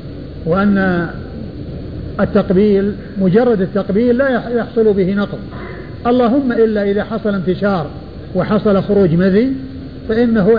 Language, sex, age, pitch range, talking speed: Arabic, male, 50-69, 190-225 Hz, 95 wpm